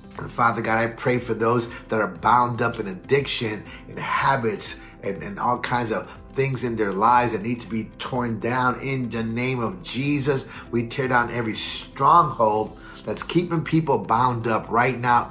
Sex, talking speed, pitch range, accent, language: male, 185 wpm, 115-140 Hz, American, English